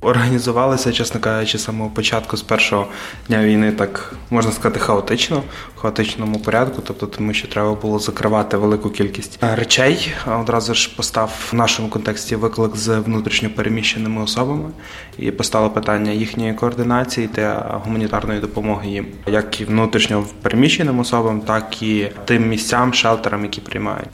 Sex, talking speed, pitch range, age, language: male, 135 wpm, 105-120 Hz, 20-39, Ukrainian